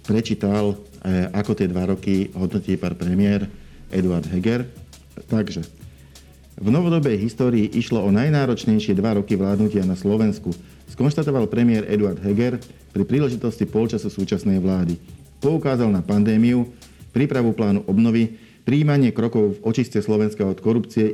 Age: 50-69